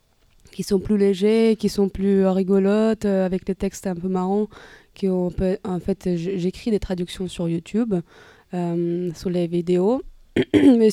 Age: 20-39